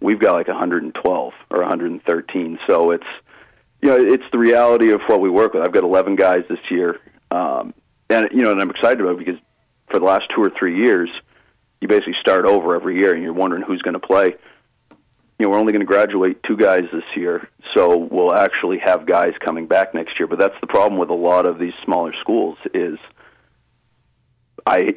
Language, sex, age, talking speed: English, male, 40-59, 210 wpm